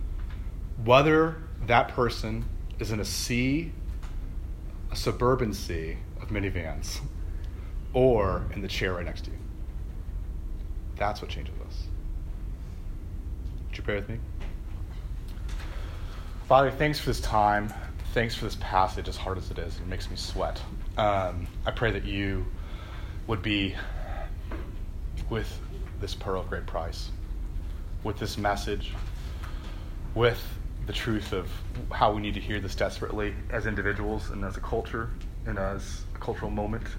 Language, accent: English, American